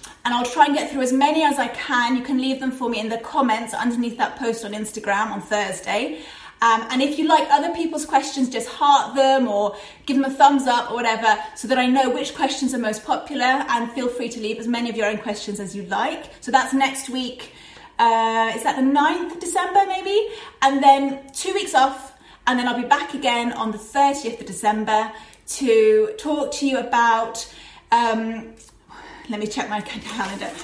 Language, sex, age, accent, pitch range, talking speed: English, female, 30-49, British, 230-310 Hz, 210 wpm